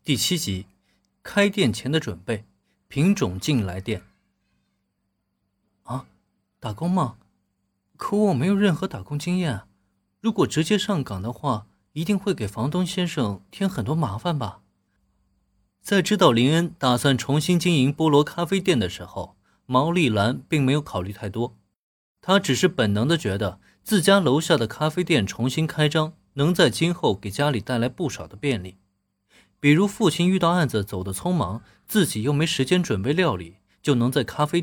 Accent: native